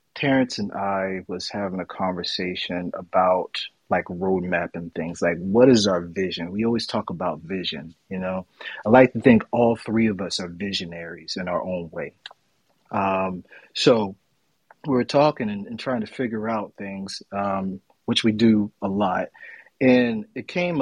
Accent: American